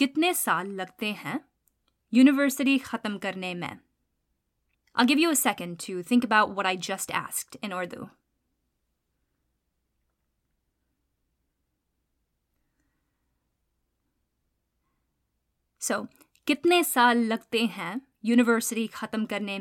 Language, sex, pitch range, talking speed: English, female, 200-270 Hz, 90 wpm